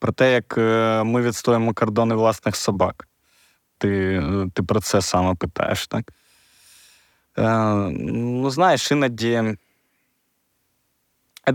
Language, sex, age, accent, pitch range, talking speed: Ukrainian, male, 20-39, native, 105-120 Hz, 105 wpm